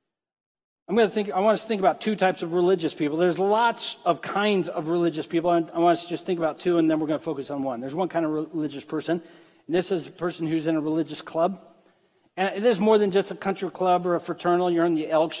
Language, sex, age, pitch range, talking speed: English, male, 40-59, 175-235 Hz, 260 wpm